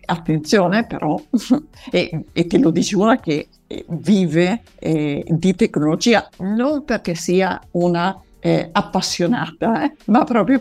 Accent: native